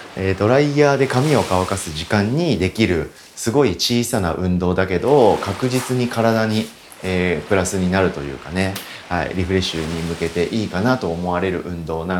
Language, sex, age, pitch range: Japanese, male, 30-49, 85-110 Hz